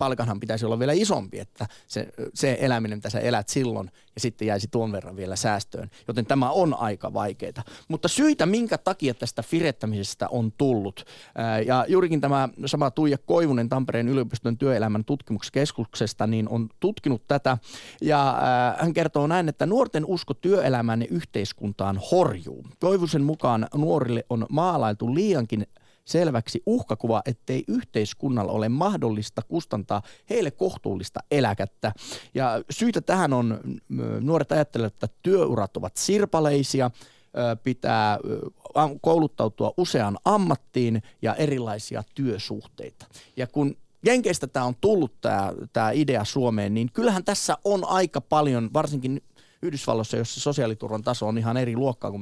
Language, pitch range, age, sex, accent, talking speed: Finnish, 110-150 Hz, 30-49, male, native, 135 wpm